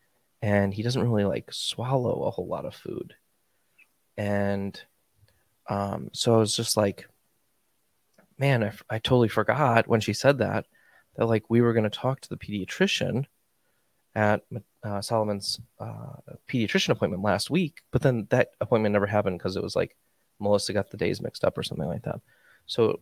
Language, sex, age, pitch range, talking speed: English, male, 20-39, 105-120 Hz, 175 wpm